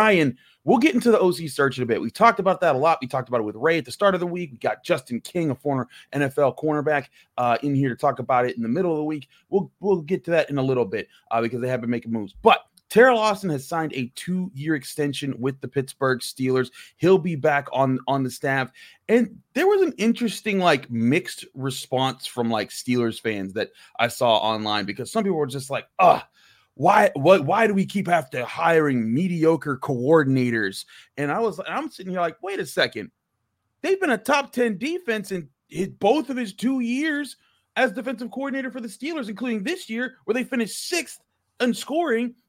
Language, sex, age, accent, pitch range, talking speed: English, male, 30-49, American, 135-230 Hz, 220 wpm